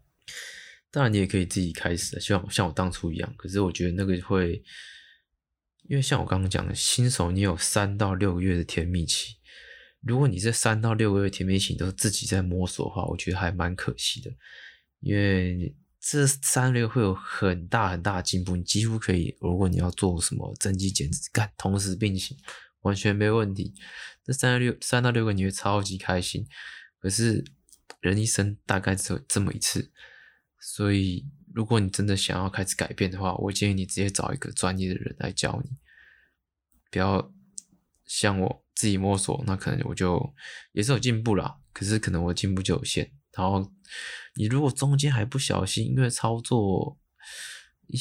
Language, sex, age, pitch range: Chinese, male, 20-39, 90-115 Hz